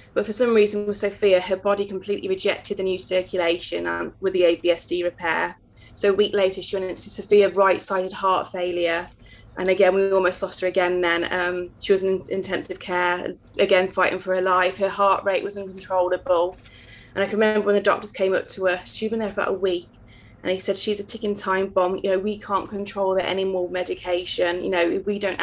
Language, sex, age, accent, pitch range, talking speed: English, female, 20-39, British, 180-195 Hz, 215 wpm